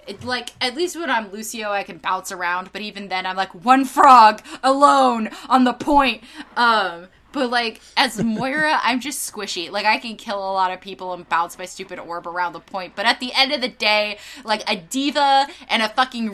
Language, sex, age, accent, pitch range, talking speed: English, female, 20-39, American, 195-260 Hz, 215 wpm